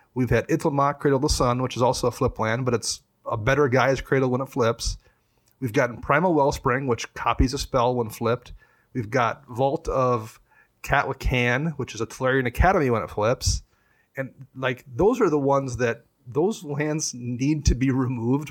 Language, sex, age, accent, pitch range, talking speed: English, male, 30-49, American, 115-135 Hz, 190 wpm